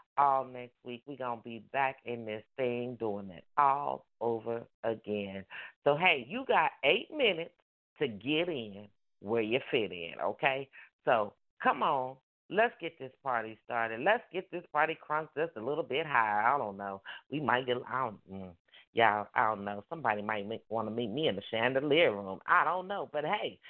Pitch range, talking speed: 115-185 Hz, 190 wpm